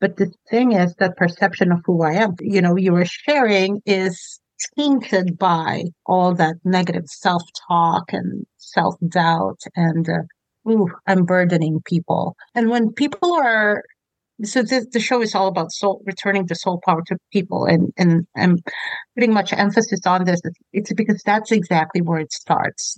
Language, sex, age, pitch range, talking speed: English, female, 50-69, 175-210 Hz, 170 wpm